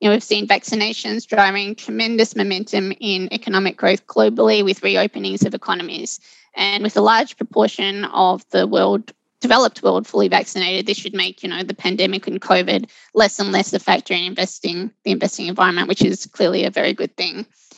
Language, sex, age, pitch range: Thai, female, 20-39, 190-225 Hz